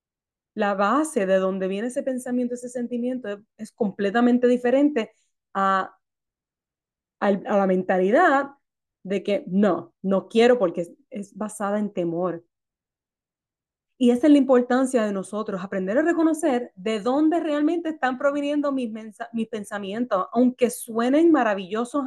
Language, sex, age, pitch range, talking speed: English, female, 30-49, 190-250 Hz, 130 wpm